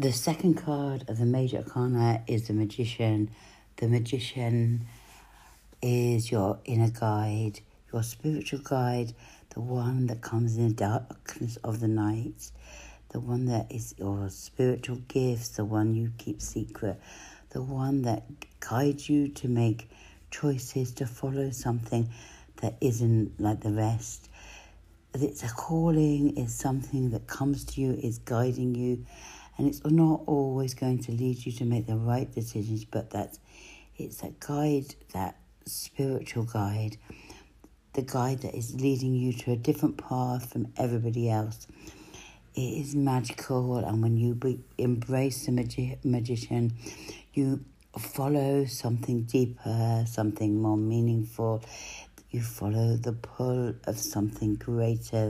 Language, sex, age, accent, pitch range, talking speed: English, female, 60-79, British, 110-130 Hz, 140 wpm